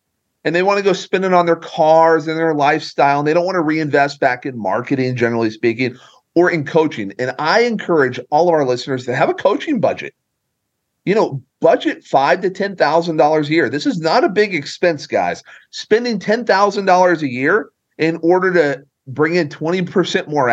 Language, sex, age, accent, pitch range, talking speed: English, male, 40-59, American, 135-180 Hz, 190 wpm